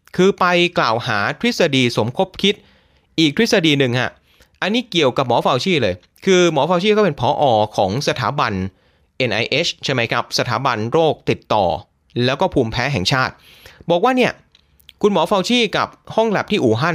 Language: Thai